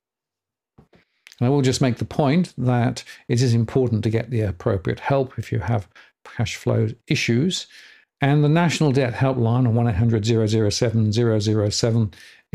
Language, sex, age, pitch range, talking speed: English, male, 50-69, 110-130 Hz, 180 wpm